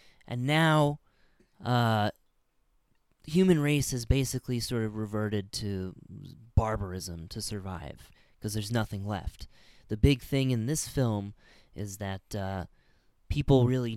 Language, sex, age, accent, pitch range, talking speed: English, male, 20-39, American, 100-130 Hz, 125 wpm